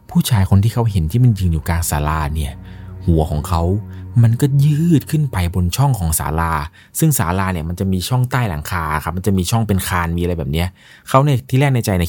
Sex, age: male, 20-39